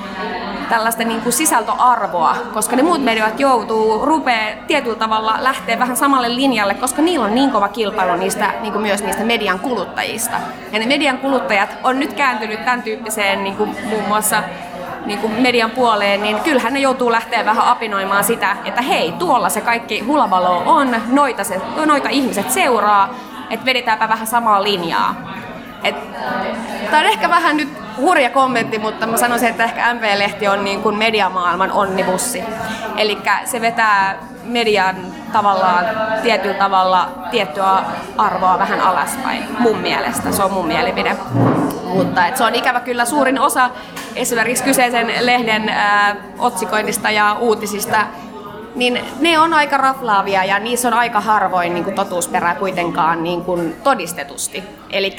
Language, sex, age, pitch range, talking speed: Finnish, female, 20-39, 200-245 Hz, 145 wpm